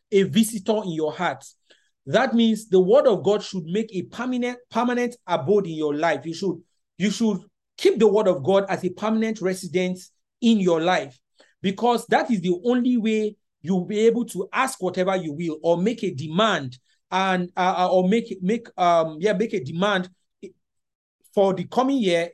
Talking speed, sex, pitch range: 185 wpm, male, 175-220 Hz